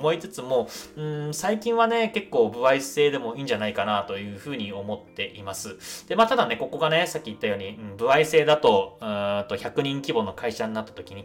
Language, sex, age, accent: Japanese, male, 20-39, native